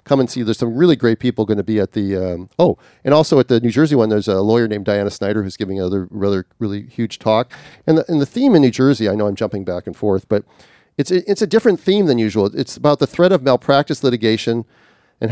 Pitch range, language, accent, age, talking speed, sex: 105-125 Hz, English, American, 40-59, 260 wpm, male